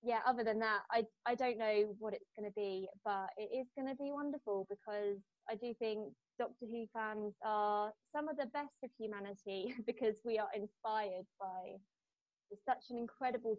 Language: English